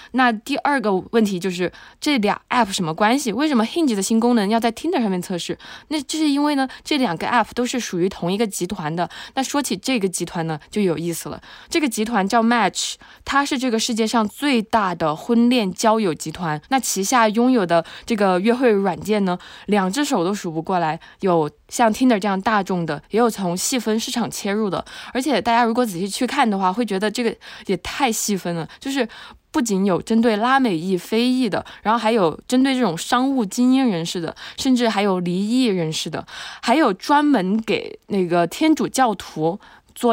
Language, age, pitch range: Chinese, 20-39, 180-245 Hz